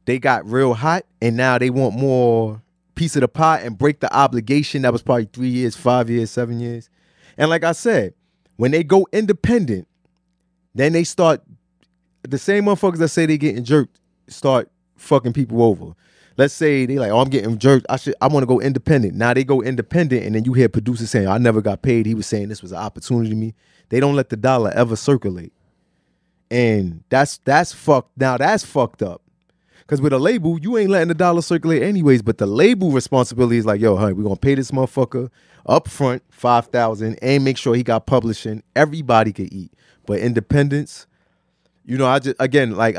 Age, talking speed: 20-39, 205 wpm